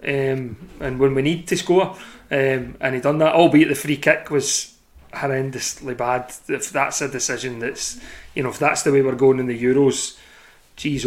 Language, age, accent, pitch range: English, 30-49, British, 135-165 Hz